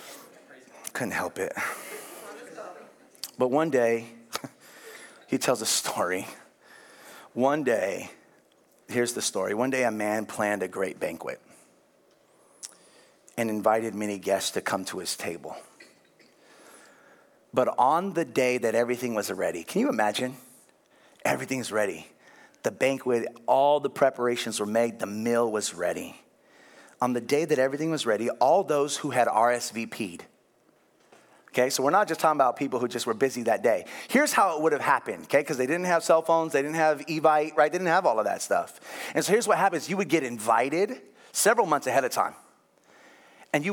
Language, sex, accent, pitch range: English, male, American, 120-190 Hz